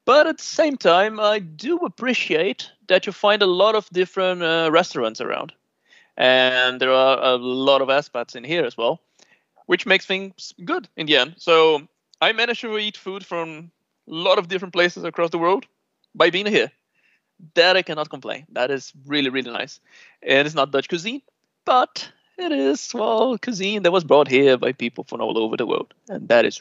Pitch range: 135-195 Hz